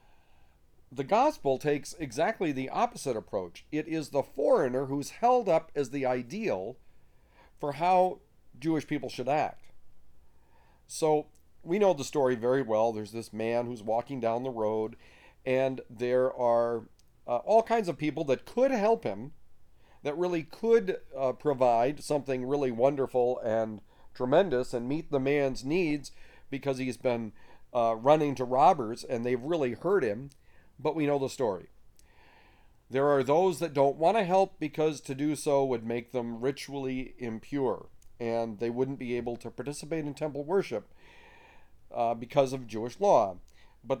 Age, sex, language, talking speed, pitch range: 40-59, male, English, 155 wpm, 125-150 Hz